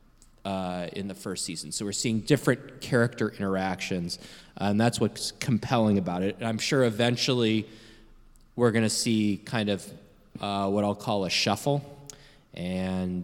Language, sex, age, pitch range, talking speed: English, male, 20-39, 95-120 Hz, 155 wpm